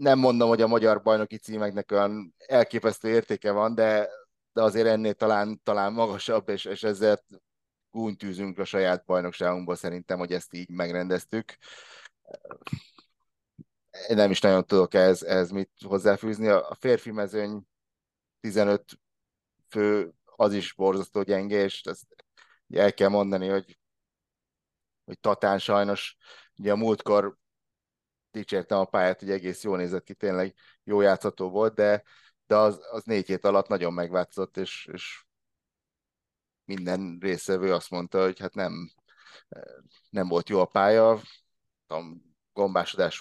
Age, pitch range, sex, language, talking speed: 30-49, 90-105 Hz, male, Hungarian, 130 wpm